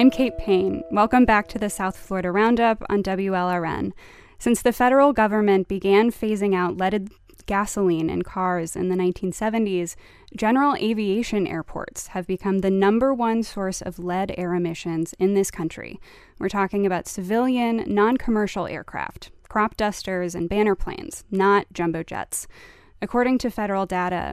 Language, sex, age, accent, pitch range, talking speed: English, female, 10-29, American, 185-220 Hz, 150 wpm